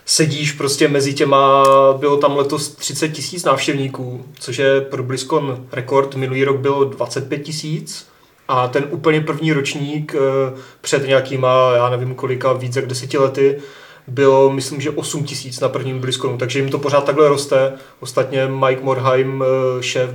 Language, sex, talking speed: Czech, male, 155 wpm